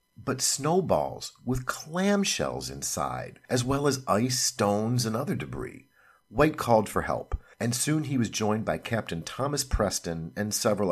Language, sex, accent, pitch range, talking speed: English, male, American, 85-130 Hz, 155 wpm